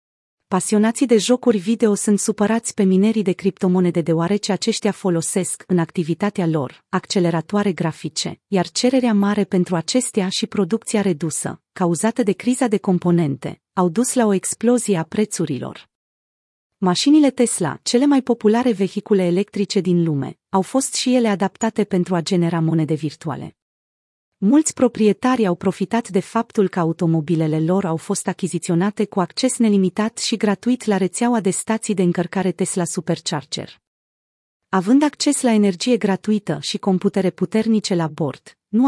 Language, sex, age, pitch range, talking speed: Romanian, female, 30-49, 175-220 Hz, 145 wpm